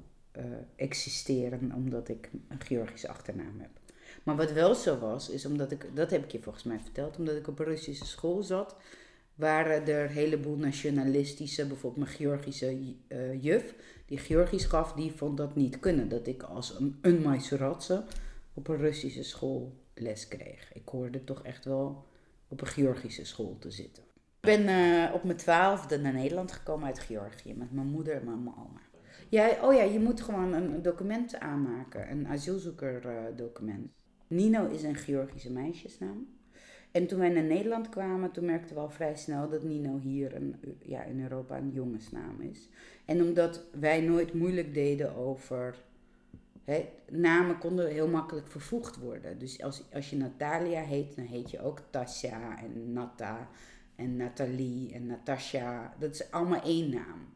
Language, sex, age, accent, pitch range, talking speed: Dutch, female, 40-59, Dutch, 130-165 Hz, 170 wpm